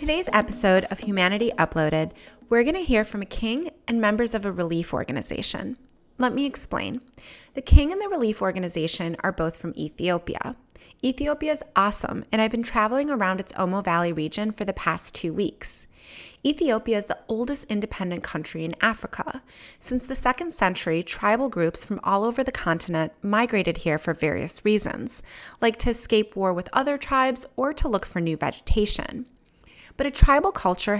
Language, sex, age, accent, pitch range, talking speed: English, female, 30-49, American, 175-250 Hz, 170 wpm